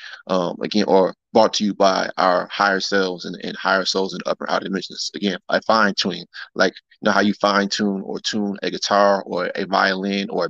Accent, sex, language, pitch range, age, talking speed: American, male, English, 95-110 Hz, 20-39, 205 wpm